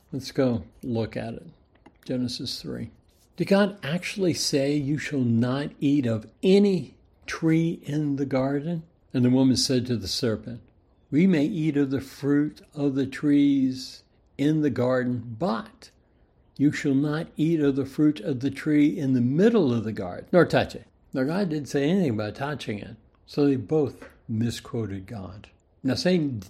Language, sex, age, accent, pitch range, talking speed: English, male, 60-79, American, 115-145 Hz, 170 wpm